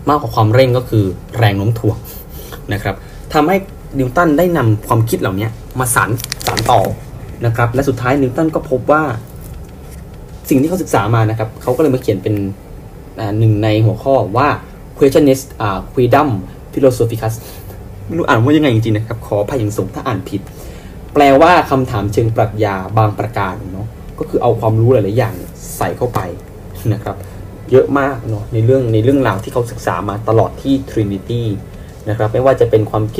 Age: 20-39